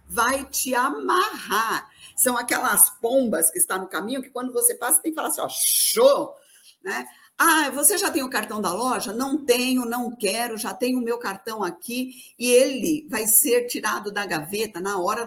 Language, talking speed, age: Portuguese, 195 wpm, 50-69